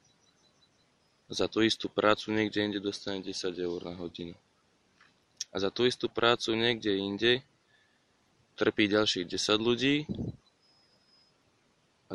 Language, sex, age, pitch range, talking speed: Slovak, male, 20-39, 90-100 Hz, 115 wpm